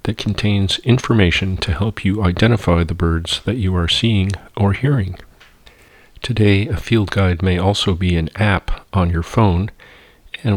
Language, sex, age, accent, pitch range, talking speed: English, male, 40-59, American, 85-105 Hz, 160 wpm